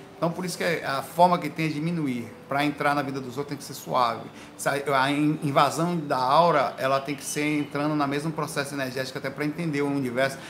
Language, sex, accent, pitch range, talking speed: Portuguese, male, Brazilian, 140-170 Hz, 215 wpm